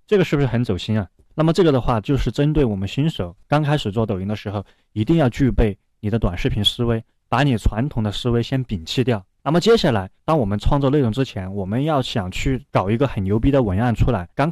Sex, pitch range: male, 105-145 Hz